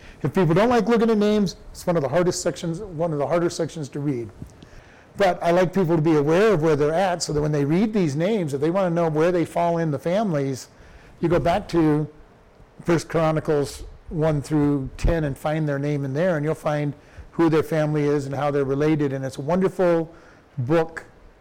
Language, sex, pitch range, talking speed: English, male, 145-175 Hz, 220 wpm